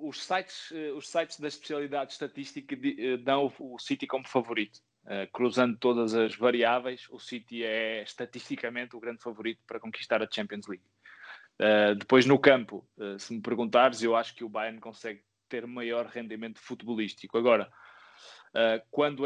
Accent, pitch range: Brazilian, 115-135 Hz